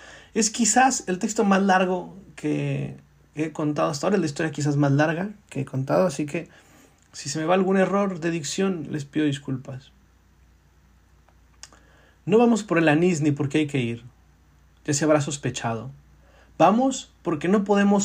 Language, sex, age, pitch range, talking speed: Spanish, male, 40-59, 135-170 Hz, 170 wpm